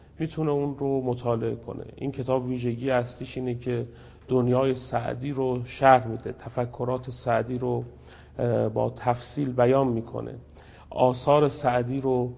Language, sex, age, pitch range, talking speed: English, male, 40-59, 120-135 Hz, 125 wpm